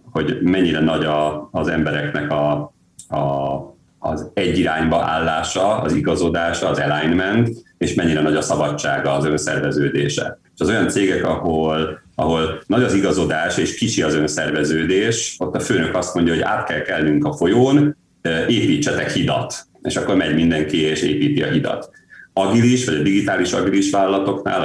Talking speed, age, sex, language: 150 wpm, 30-49, male, Hungarian